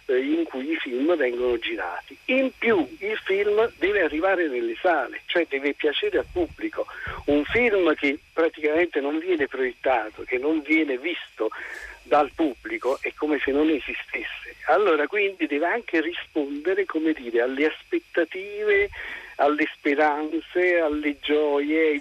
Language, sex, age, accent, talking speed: Italian, male, 50-69, native, 140 wpm